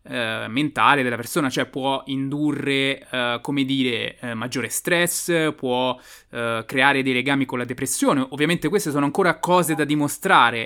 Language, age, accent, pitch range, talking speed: Italian, 20-39, native, 130-170 Hz, 160 wpm